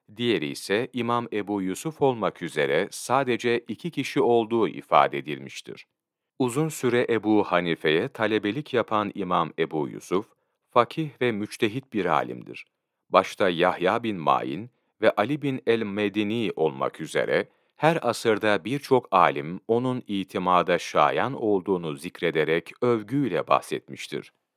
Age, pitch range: 40-59, 100-135 Hz